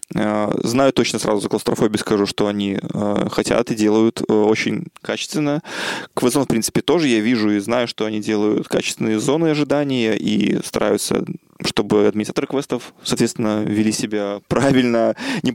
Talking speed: 145 wpm